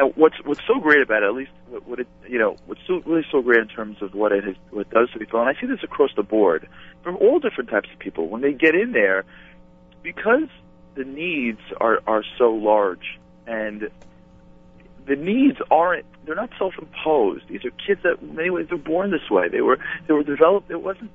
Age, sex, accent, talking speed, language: 40-59, male, American, 225 wpm, English